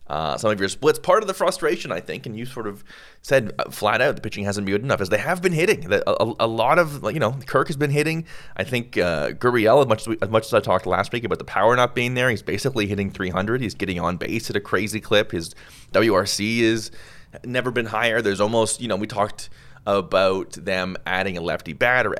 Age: 30-49